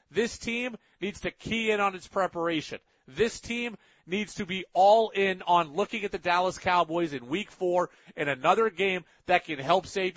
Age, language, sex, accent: 40-59, English, male, American